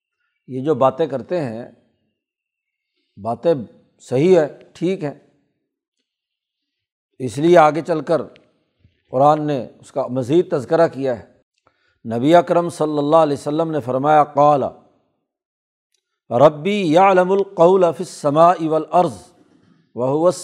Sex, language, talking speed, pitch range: male, Urdu, 110 wpm, 145-180 Hz